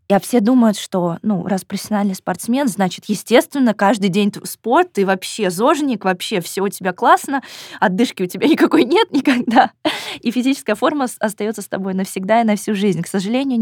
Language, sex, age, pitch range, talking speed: Russian, female, 20-39, 180-235 Hz, 175 wpm